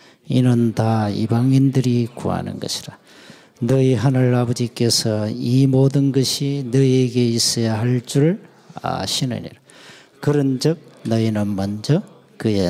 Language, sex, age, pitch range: Korean, male, 40-59, 110-145 Hz